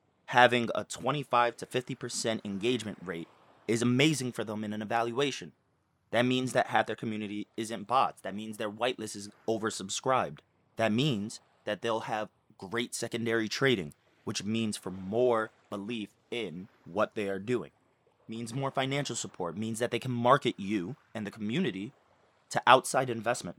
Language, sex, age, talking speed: English, male, 30-49, 165 wpm